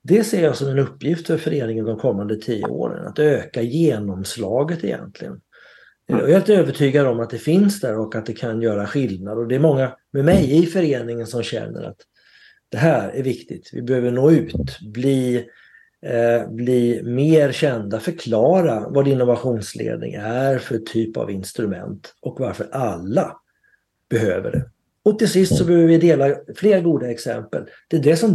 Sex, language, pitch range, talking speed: male, Swedish, 115-155 Hz, 175 wpm